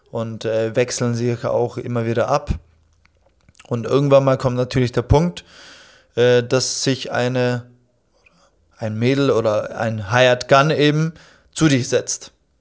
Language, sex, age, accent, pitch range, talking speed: German, male, 20-39, German, 120-145 Hz, 130 wpm